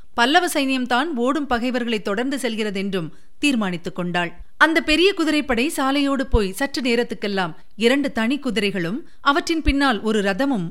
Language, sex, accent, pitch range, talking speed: Tamil, female, native, 200-280 Hz, 110 wpm